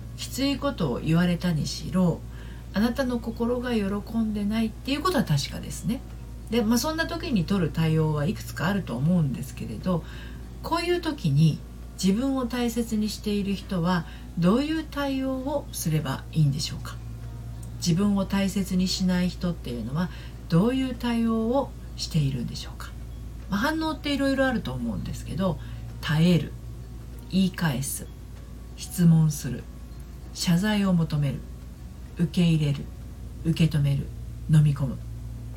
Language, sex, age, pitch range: Japanese, female, 40-59, 145-235 Hz